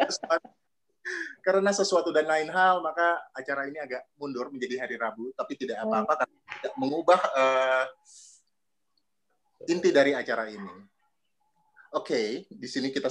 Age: 30-49